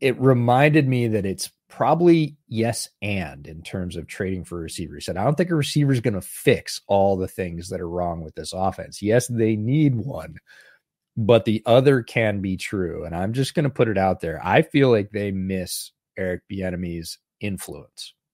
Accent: American